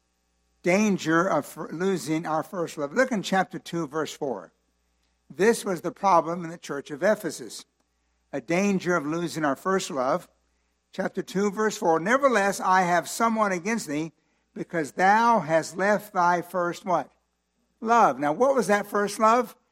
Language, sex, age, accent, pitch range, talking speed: English, male, 60-79, American, 150-210 Hz, 160 wpm